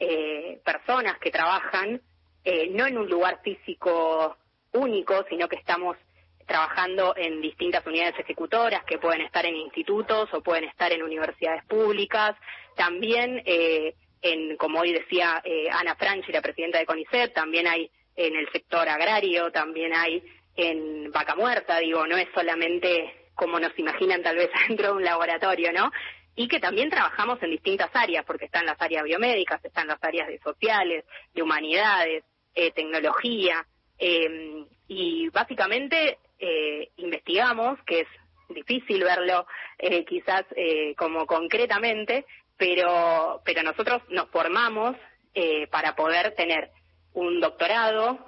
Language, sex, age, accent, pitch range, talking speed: Spanish, female, 20-39, Argentinian, 160-215 Hz, 140 wpm